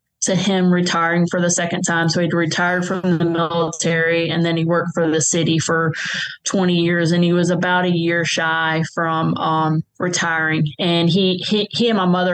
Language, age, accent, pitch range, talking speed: English, 20-39, American, 165-180 Hz, 195 wpm